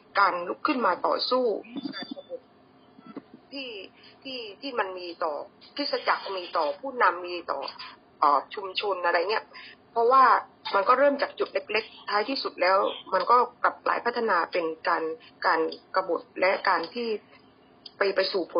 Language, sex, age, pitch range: Thai, female, 20-39, 190-270 Hz